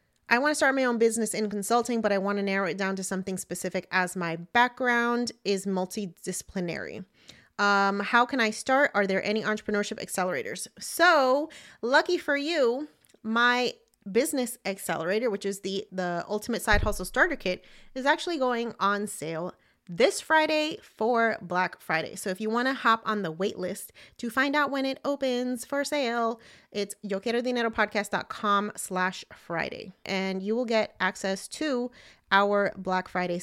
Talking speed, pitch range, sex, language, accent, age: 160 wpm, 195-250 Hz, female, English, American, 30-49